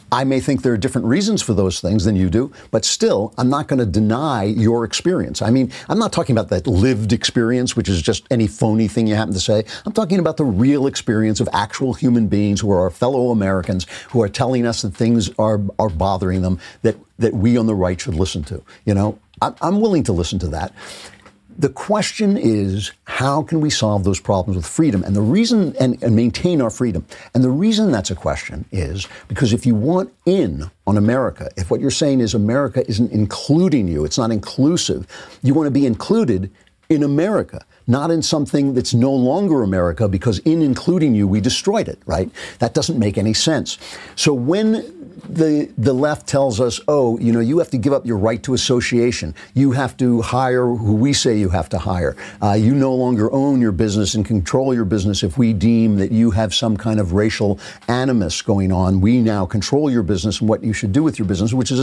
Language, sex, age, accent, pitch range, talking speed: English, male, 60-79, American, 105-135 Hz, 215 wpm